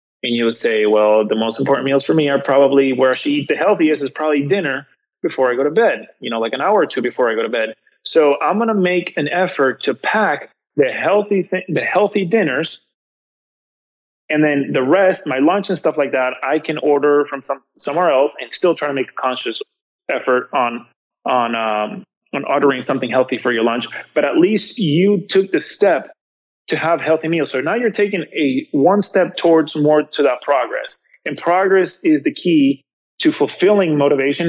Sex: male